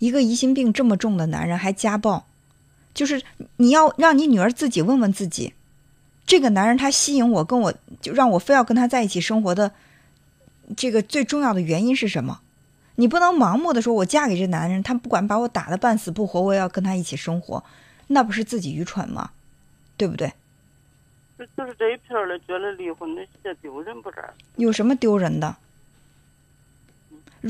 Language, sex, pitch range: Chinese, female, 170-245 Hz